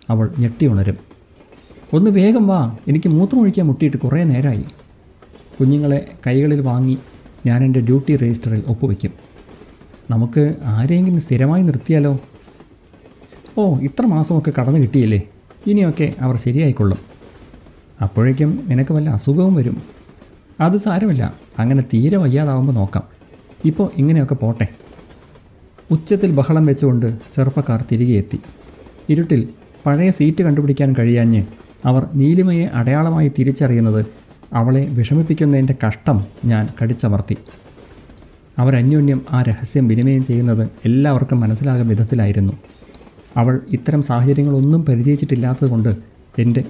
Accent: native